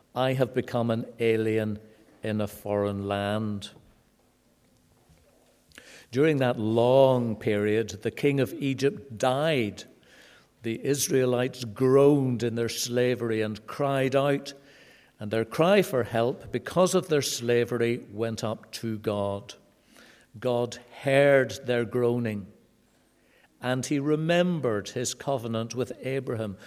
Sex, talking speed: male, 115 wpm